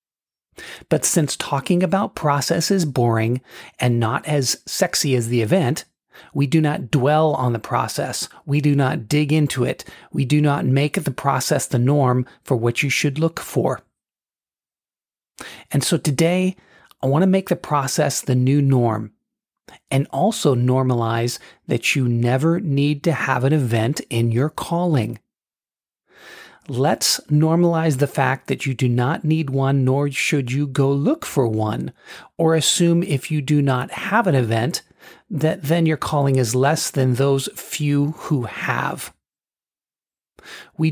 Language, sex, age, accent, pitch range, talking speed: English, male, 40-59, American, 130-160 Hz, 155 wpm